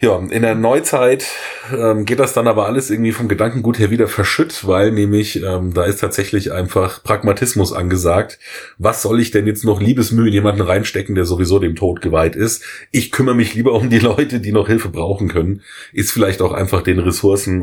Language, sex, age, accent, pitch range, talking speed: German, male, 30-49, German, 95-115 Hz, 200 wpm